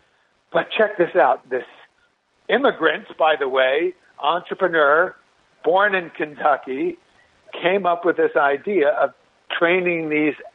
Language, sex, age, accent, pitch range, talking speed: English, male, 60-79, American, 145-205 Hz, 120 wpm